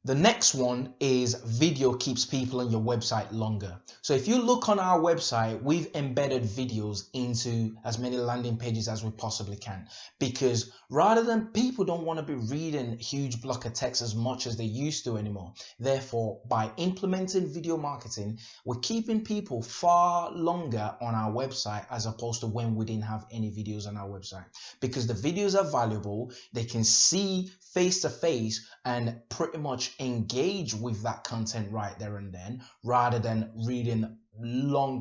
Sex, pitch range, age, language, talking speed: male, 110-145 Hz, 20-39, English, 175 wpm